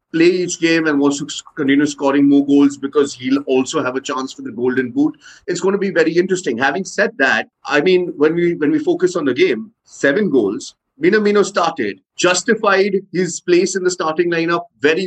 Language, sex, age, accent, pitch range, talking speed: English, male, 30-49, Indian, 145-180 Hz, 205 wpm